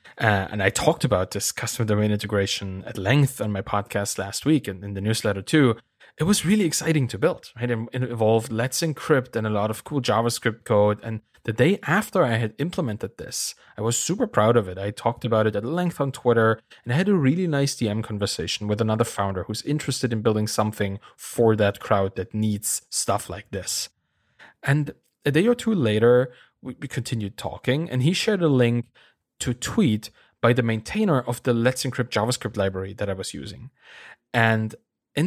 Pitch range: 105-135 Hz